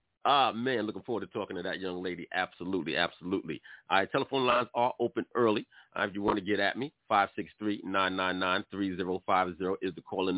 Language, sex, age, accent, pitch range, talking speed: English, male, 40-59, American, 95-105 Hz, 180 wpm